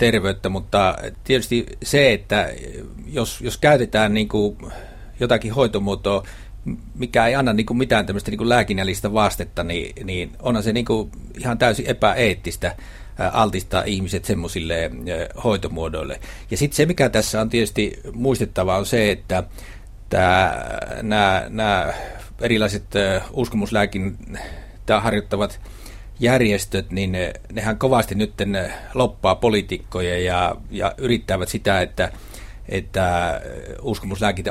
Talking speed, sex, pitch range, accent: 110 wpm, male, 95-110 Hz, native